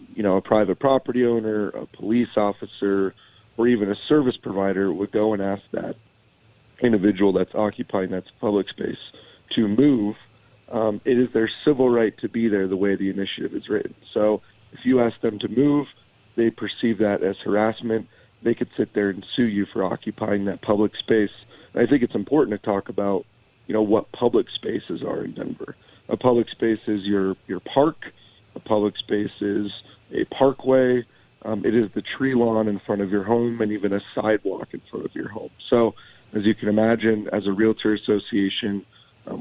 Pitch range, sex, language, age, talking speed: 100-115 Hz, male, English, 40-59, 190 wpm